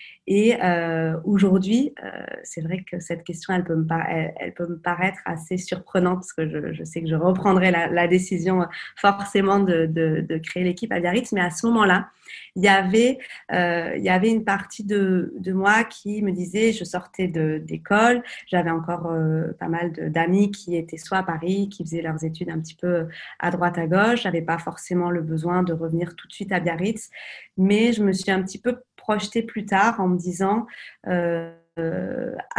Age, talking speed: 20-39, 205 wpm